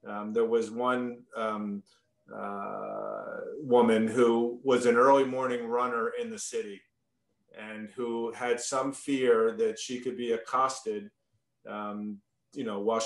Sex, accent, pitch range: male, American, 115-145 Hz